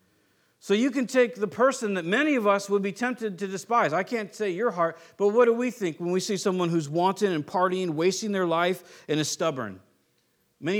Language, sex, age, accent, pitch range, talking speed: English, male, 50-69, American, 145-210 Hz, 220 wpm